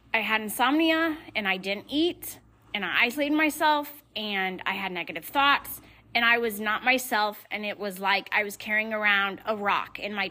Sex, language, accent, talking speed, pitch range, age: female, English, American, 190 wpm, 205-275 Hz, 30-49